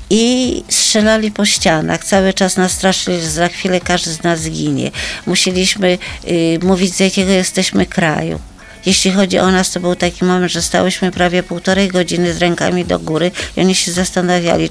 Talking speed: 170 wpm